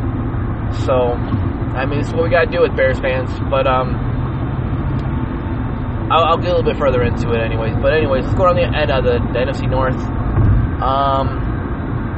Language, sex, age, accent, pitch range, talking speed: English, male, 20-39, American, 115-130 Hz, 175 wpm